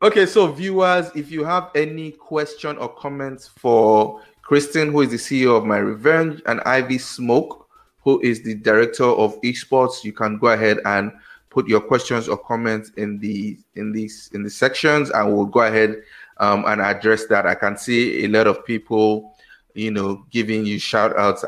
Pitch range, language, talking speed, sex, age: 105-125 Hz, English, 185 wpm, male, 30-49